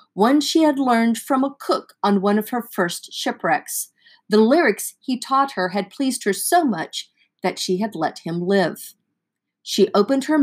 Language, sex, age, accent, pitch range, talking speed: English, female, 40-59, American, 185-260 Hz, 185 wpm